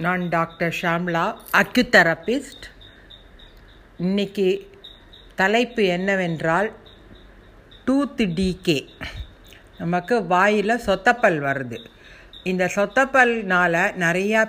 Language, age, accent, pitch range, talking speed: Tamil, 50-69, native, 170-220 Hz, 70 wpm